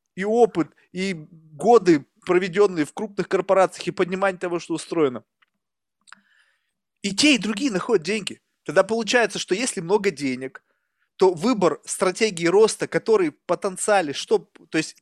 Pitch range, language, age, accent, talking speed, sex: 165-225 Hz, Russian, 20-39, native, 135 wpm, male